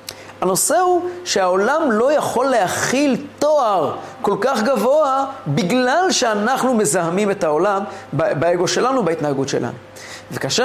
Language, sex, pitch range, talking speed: Hebrew, male, 165-245 Hz, 115 wpm